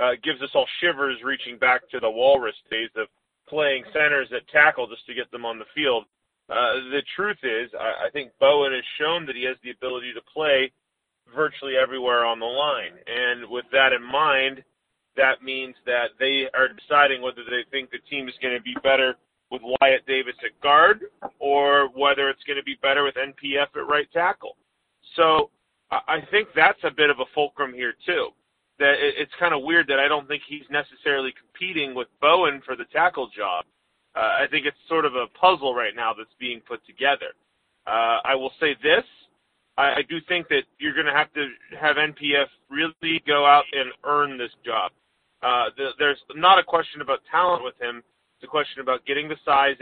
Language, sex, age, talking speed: English, male, 40-59, 200 wpm